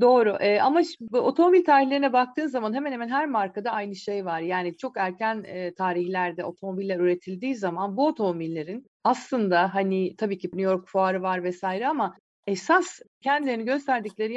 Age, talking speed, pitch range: 40-59, 160 wpm, 195-270 Hz